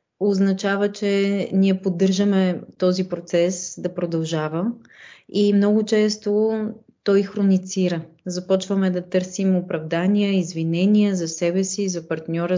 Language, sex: Bulgarian, female